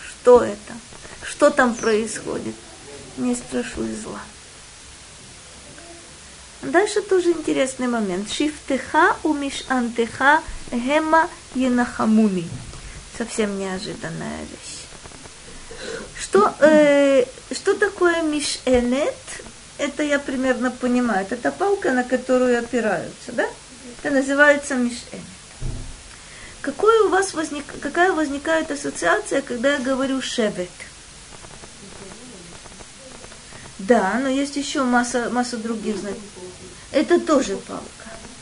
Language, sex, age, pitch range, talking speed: Russian, female, 20-39, 230-305 Hz, 95 wpm